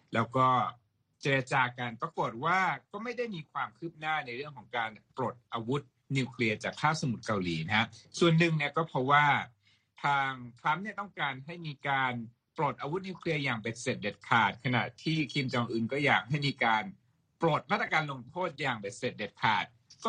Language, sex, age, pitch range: Thai, male, 60-79, 120-150 Hz